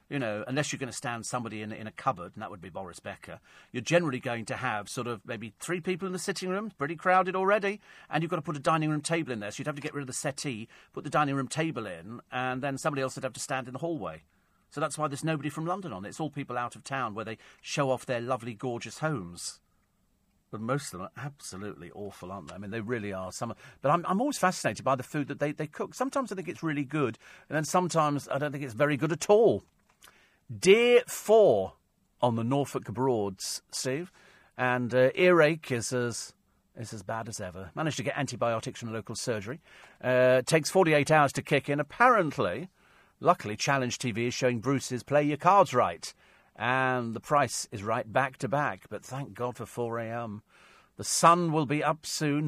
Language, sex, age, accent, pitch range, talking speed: English, male, 40-59, British, 120-160 Hz, 230 wpm